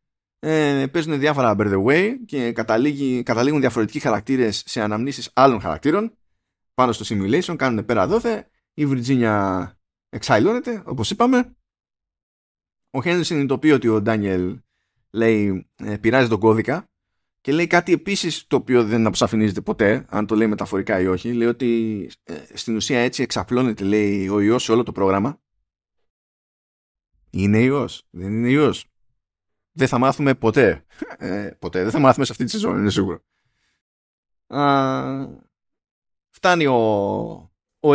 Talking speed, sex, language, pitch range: 140 wpm, male, Greek, 105-145 Hz